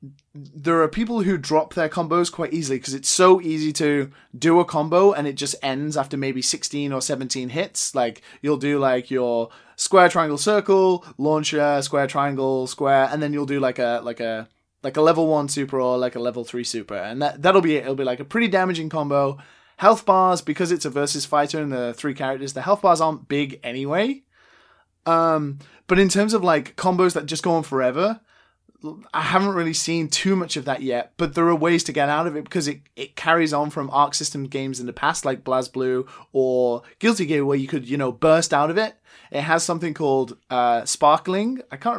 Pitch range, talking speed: 135-170 Hz, 215 wpm